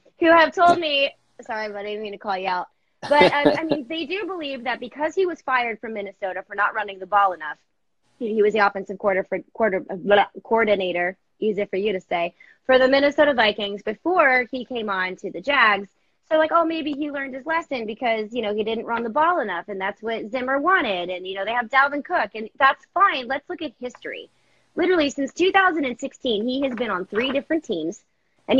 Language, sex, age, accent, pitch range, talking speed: English, female, 30-49, American, 210-305 Hz, 225 wpm